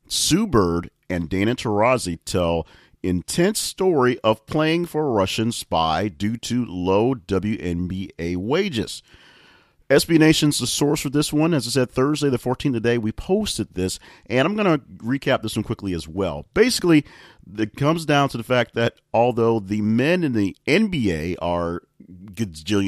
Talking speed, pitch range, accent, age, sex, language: 170 wpm, 85-125 Hz, American, 40-59, male, English